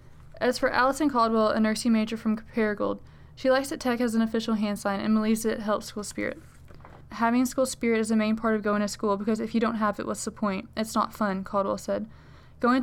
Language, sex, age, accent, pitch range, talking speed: English, female, 20-39, American, 210-240 Hz, 235 wpm